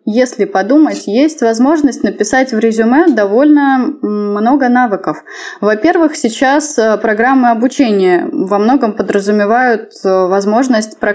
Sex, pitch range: female, 205-265 Hz